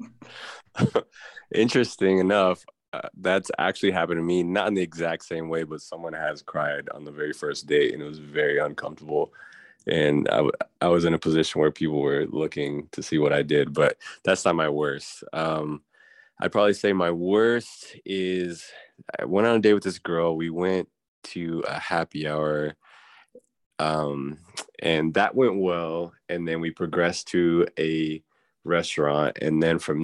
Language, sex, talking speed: English, male, 170 wpm